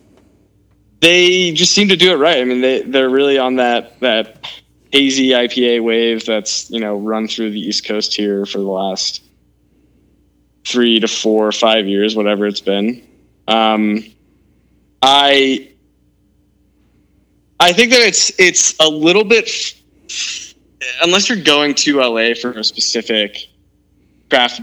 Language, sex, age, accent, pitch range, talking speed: English, male, 20-39, American, 105-135 Hz, 145 wpm